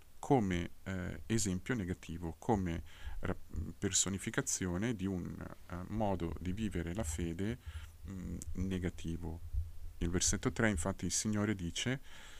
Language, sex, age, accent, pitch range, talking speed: Italian, male, 50-69, native, 85-105 Hz, 95 wpm